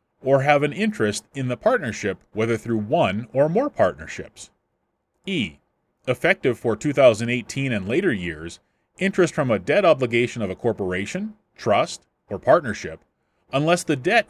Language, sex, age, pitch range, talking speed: English, male, 30-49, 105-150 Hz, 145 wpm